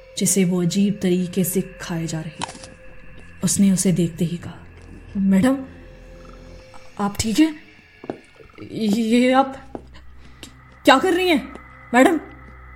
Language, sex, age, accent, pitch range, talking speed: Hindi, female, 20-39, native, 170-205 Hz, 120 wpm